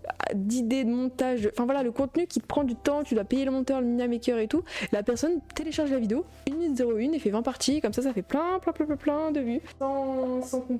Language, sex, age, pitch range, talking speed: French, female, 20-39, 210-280 Hz, 255 wpm